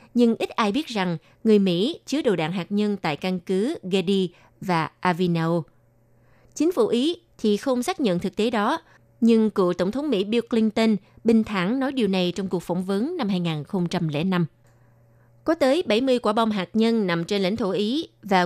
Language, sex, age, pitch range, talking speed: Vietnamese, female, 20-39, 175-230 Hz, 190 wpm